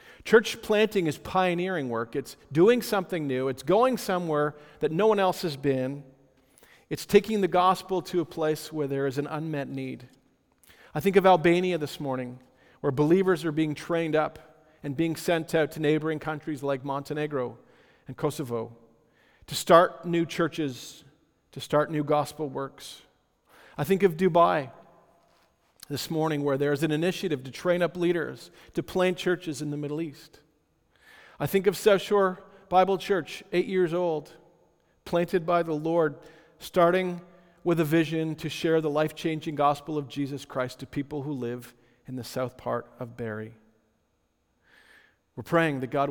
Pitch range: 135-175 Hz